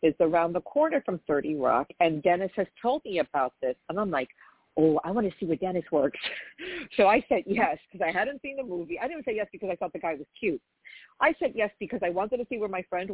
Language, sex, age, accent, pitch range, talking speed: English, female, 50-69, American, 150-200 Hz, 260 wpm